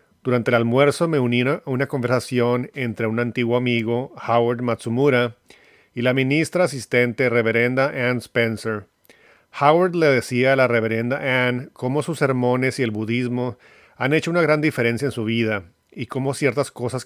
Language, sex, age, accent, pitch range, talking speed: English, male, 40-59, Mexican, 115-135 Hz, 160 wpm